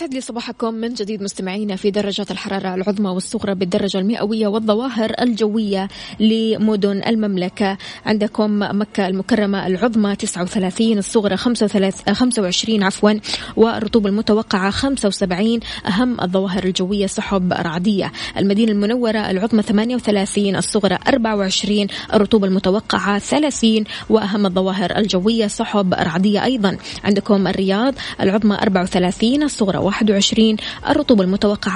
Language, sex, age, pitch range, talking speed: Arabic, female, 20-39, 195-225 Hz, 105 wpm